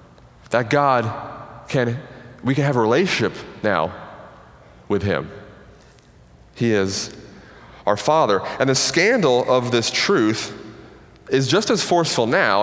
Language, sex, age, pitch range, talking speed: English, male, 30-49, 115-155 Hz, 125 wpm